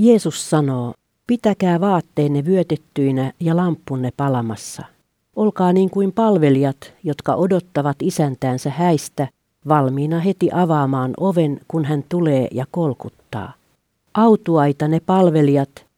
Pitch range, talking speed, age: 140-180 Hz, 105 wpm, 50-69